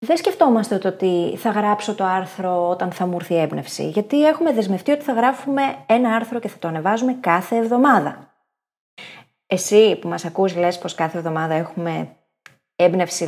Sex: female